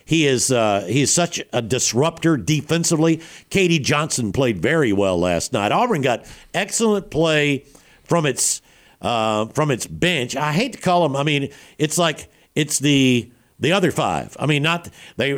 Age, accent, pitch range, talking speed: 60-79, American, 125-165 Hz, 170 wpm